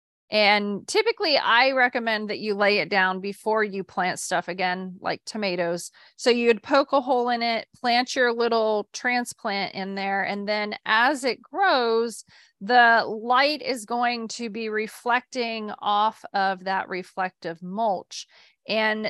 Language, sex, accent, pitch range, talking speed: English, female, American, 205-245 Hz, 150 wpm